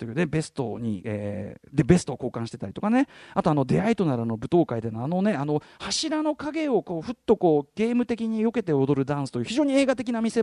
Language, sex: Japanese, male